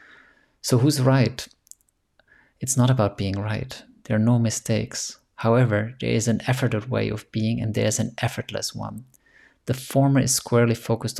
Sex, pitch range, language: male, 110-120 Hz, English